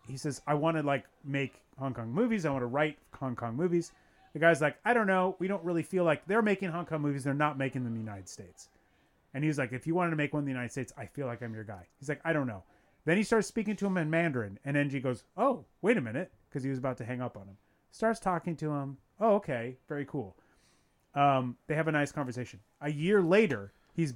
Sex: male